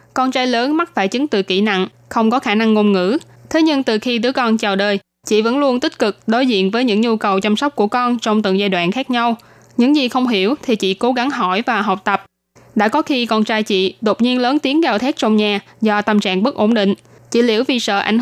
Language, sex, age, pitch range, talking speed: Vietnamese, female, 10-29, 205-245 Hz, 265 wpm